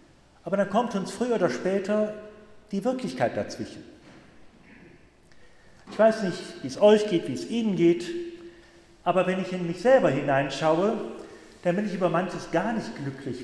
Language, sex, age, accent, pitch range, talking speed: German, male, 40-59, German, 150-205 Hz, 160 wpm